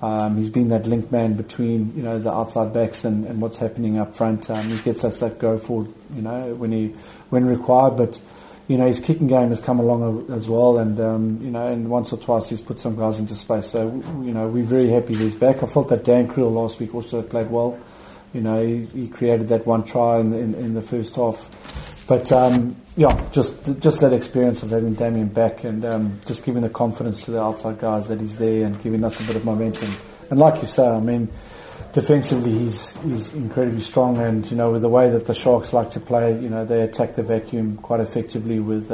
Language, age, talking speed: English, 30-49, 235 wpm